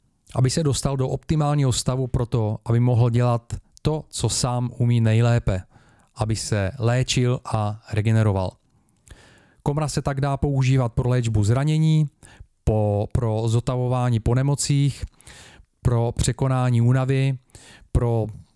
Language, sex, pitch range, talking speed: Czech, male, 110-130 Hz, 115 wpm